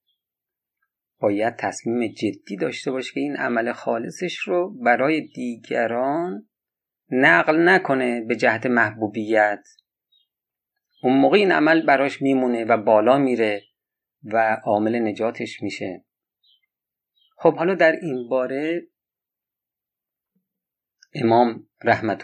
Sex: male